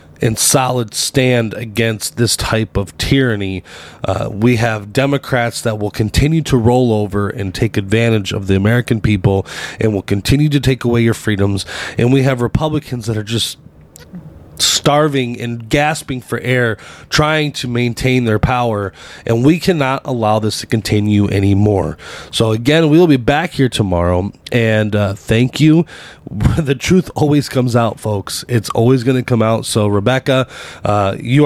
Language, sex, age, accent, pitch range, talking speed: English, male, 30-49, American, 100-130 Hz, 165 wpm